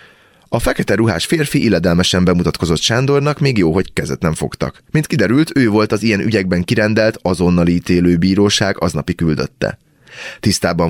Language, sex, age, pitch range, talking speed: Hungarian, male, 30-49, 85-105 Hz, 150 wpm